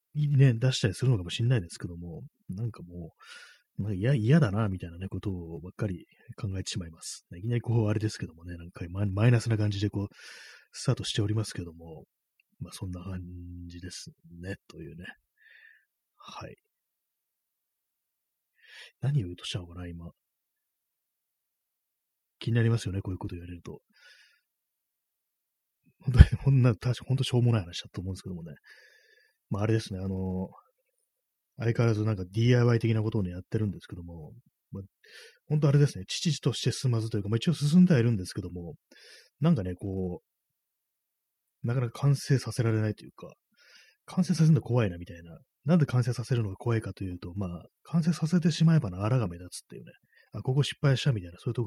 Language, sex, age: Japanese, male, 30-49